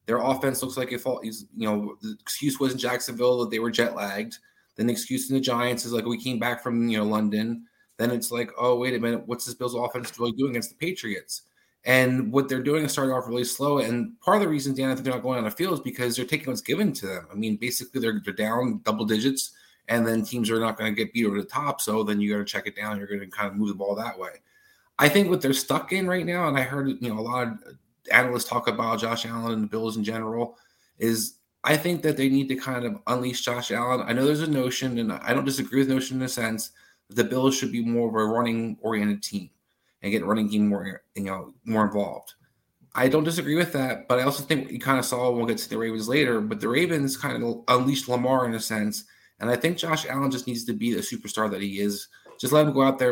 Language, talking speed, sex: English, 270 wpm, male